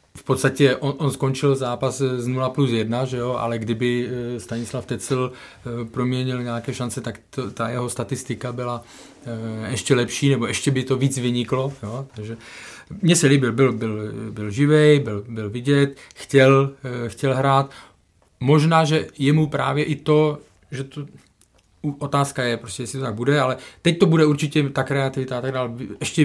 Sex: male